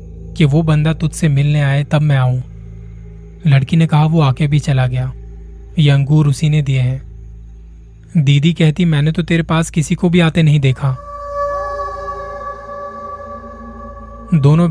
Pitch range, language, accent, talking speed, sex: 125-160 Hz, Hindi, native, 145 wpm, male